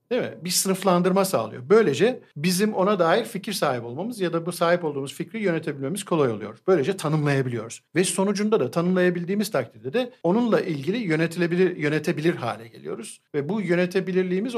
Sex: male